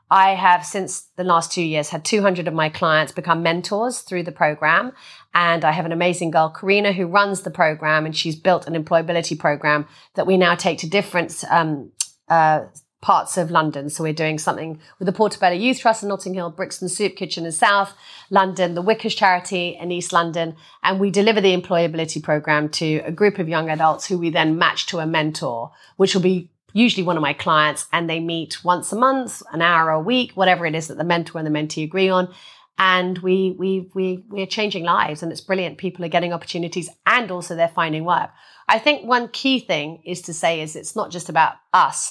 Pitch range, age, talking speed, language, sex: 160-190 Hz, 30-49, 215 wpm, English, female